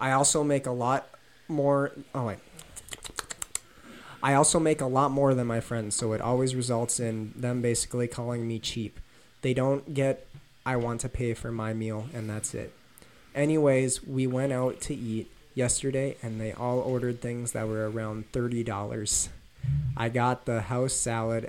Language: English